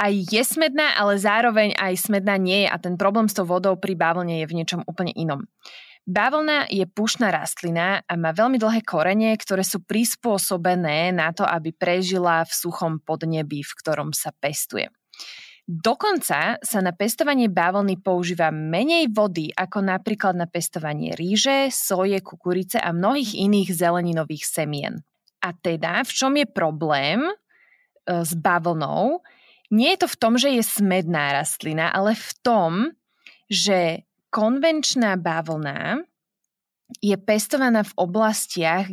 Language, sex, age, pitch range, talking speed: Slovak, female, 20-39, 170-220 Hz, 140 wpm